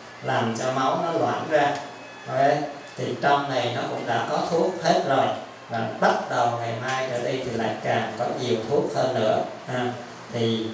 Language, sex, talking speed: Vietnamese, male, 185 wpm